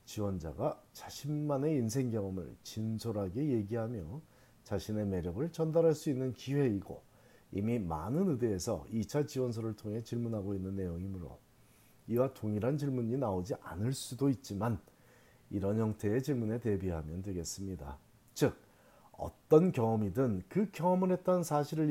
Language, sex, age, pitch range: Korean, male, 40-59, 100-130 Hz